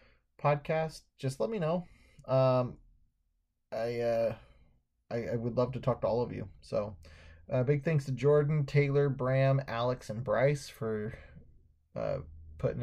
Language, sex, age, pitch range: English, male, 20-39, 105-140 Hz